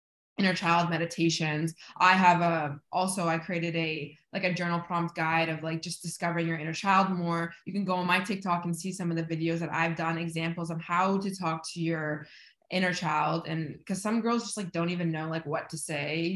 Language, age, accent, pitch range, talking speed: English, 20-39, American, 165-190 Hz, 220 wpm